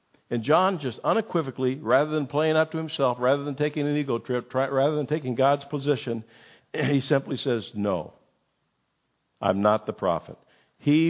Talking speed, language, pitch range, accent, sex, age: 170 wpm, English, 115-145 Hz, American, male, 50-69